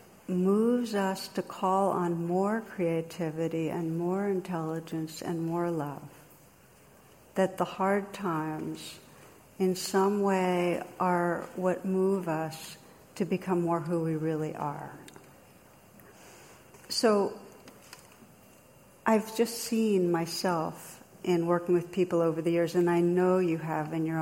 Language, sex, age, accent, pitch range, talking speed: English, female, 60-79, American, 165-190 Hz, 125 wpm